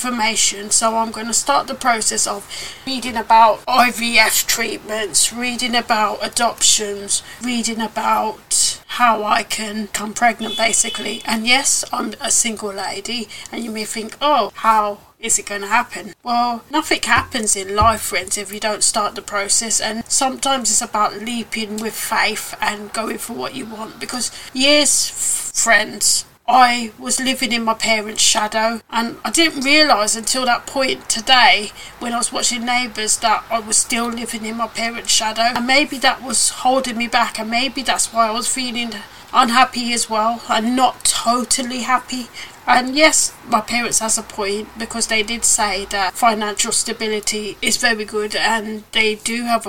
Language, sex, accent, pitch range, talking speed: English, female, British, 215-240 Hz, 170 wpm